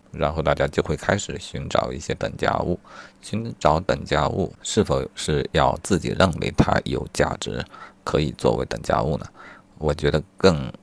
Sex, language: male, Chinese